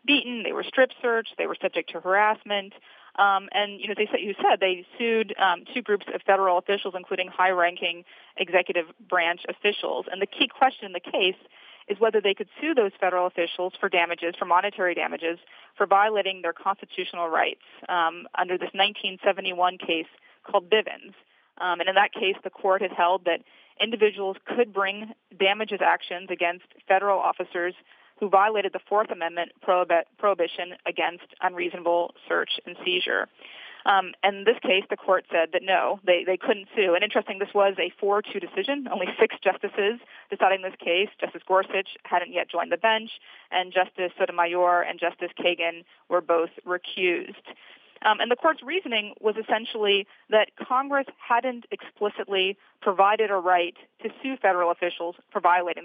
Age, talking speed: 30-49, 165 wpm